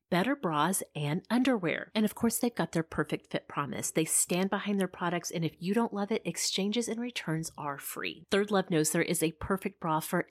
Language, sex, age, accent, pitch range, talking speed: English, female, 30-49, American, 160-225 Hz, 220 wpm